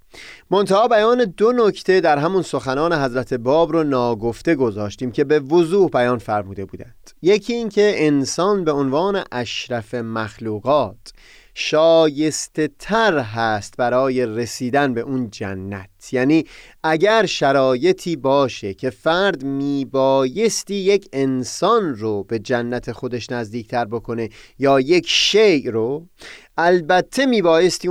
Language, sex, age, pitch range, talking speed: Persian, male, 30-49, 125-190 Hz, 120 wpm